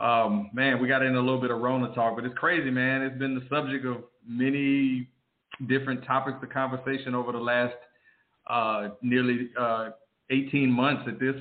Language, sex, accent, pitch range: English, male, American, 120-135 Hz